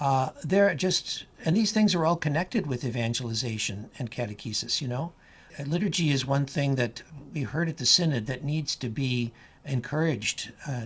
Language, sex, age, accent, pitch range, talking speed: English, male, 60-79, American, 120-150 Hz, 175 wpm